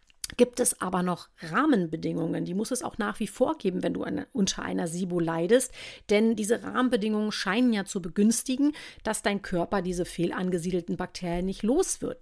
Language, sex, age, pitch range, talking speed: German, female, 40-59, 180-235 Hz, 175 wpm